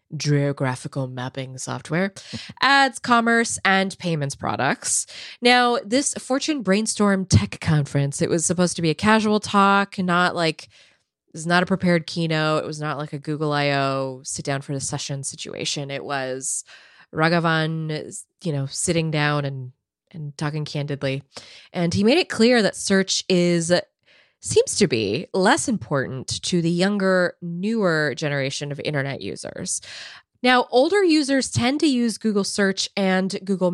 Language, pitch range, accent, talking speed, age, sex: English, 145-200 Hz, American, 150 wpm, 20-39, female